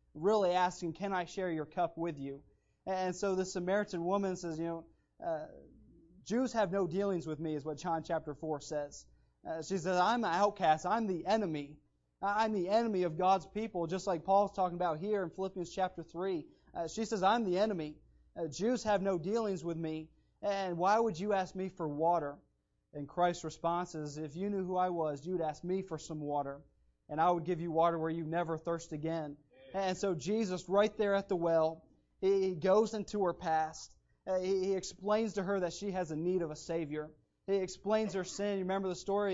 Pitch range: 160-195 Hz